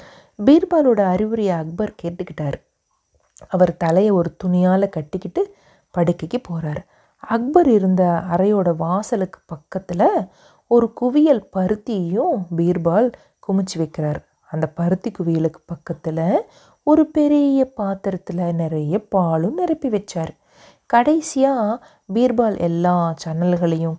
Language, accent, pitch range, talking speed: Tamil, native, 175-245 Hz, 95 wpm